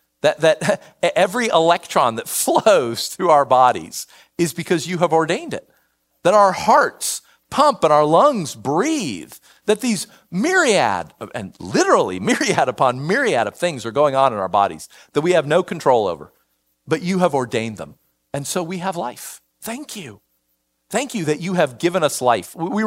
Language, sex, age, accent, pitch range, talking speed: English, male, 50-69, American, 130-210 Hz, 175 wpm